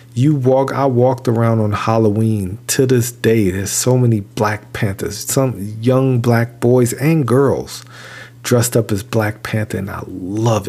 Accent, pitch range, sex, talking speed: American, 105-120 Hz, male, 165 wpm